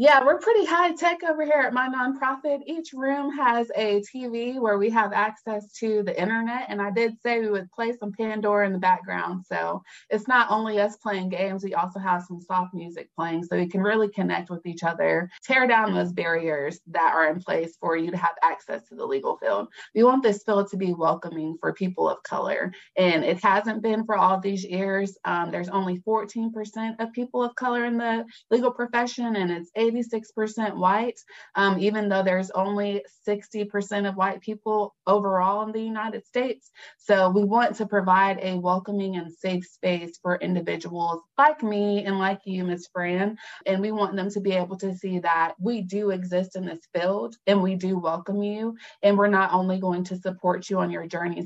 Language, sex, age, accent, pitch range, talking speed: English, female, 20-39, American, 185-225 Hz, 205 wpm